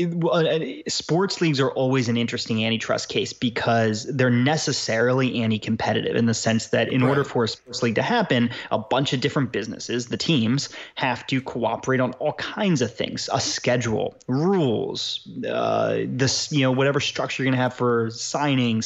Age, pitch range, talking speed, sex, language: 20-39, 115-130 Hz, 170 wpm, male, English